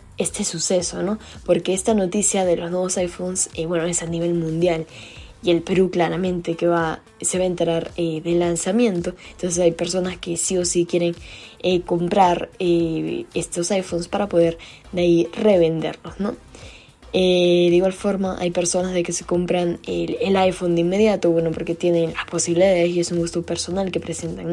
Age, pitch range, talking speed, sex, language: 10-29, 170-180 Hz, 185 wpm, female, Spanish